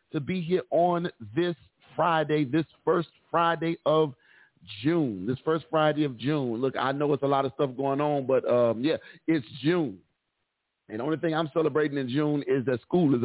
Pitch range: 125-160 Hz